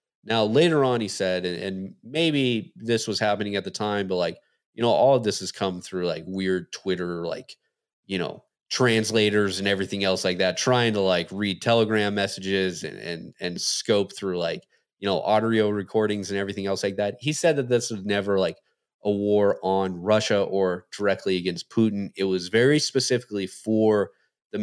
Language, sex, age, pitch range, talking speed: English, male, 30-49, 95-110 Hz, 190 wpm